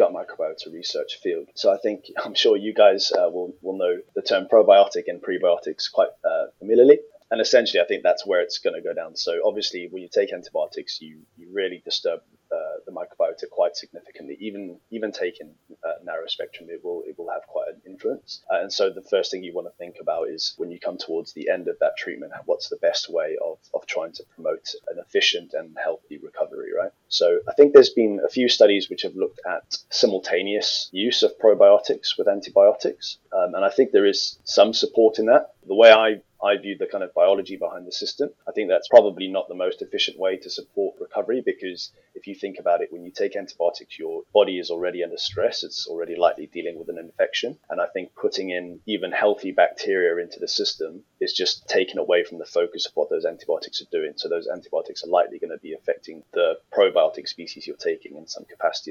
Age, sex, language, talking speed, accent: 20-39, male, English, 215 wpm, British